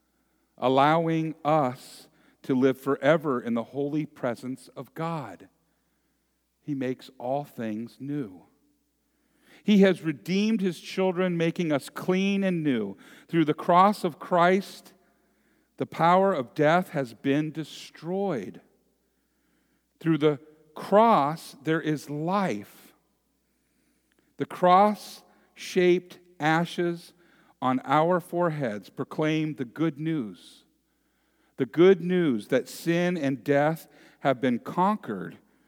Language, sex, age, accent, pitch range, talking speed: English, male, 50-69, American, 125-175 Hz, 110 wpm